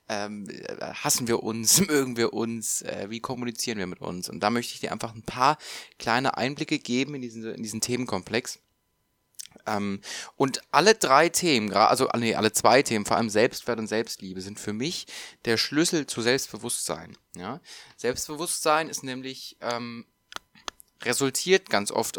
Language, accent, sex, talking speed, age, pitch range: German, German, male, 150 wpm, 20-39, 105-125 Hz